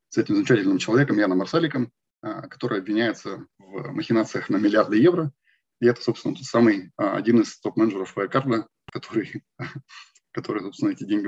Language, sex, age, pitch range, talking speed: Russian, male, 20-39, 115-160 Hz, 140 wpm